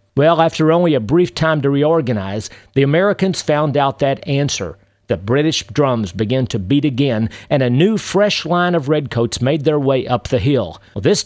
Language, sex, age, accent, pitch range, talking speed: English, male, 50-69, American, 110-160 Hz, 185 wpm